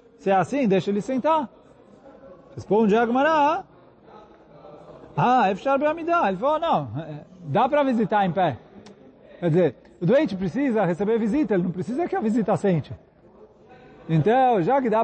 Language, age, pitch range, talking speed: Portuguese, 30-49, 180-235 Hz, 150 wpm